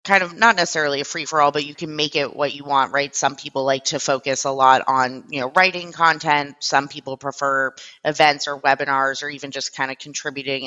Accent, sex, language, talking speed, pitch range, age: American, female, English, 220 wpm, 130-150 Hz, 20-39